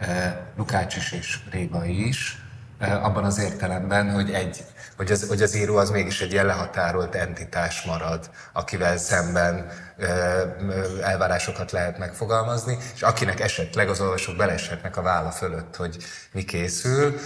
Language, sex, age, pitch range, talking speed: Hungarian, male, 30-49, 85-100 Hz, 140 wpm